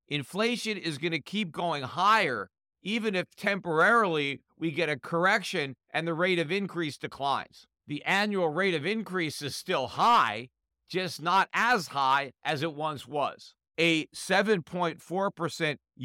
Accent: American